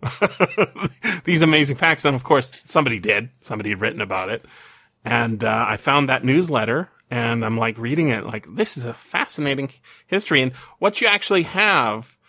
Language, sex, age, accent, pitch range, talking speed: English, male, 30-49, American, 115-155 Hz, 170 wpm